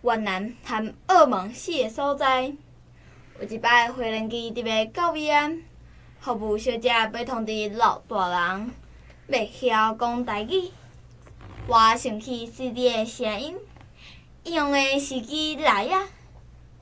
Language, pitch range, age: Chinese, 215-275 Hz, 10-29